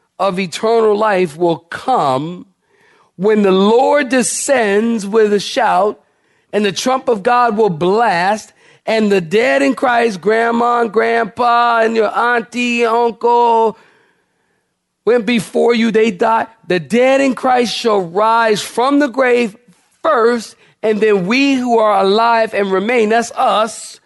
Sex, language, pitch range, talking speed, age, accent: male, English, 180-235 Hz, 140 wpm, 40-59, American